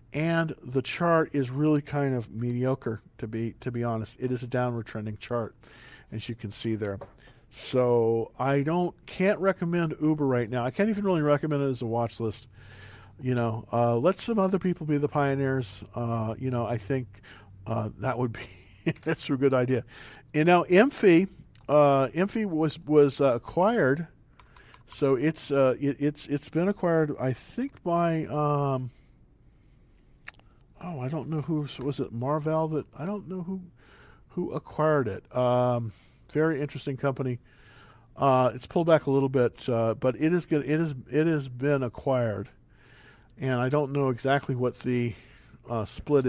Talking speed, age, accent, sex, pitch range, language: 170 wpm, 50-69, American, male, 120-150 Hz, English